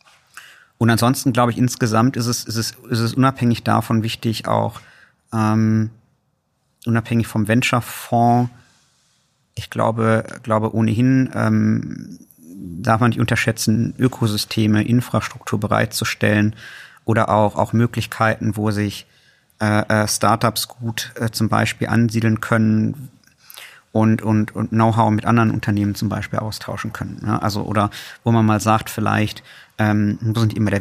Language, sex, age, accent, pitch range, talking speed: German, male, 50-69, German, 110-115 Hz, 140 wpm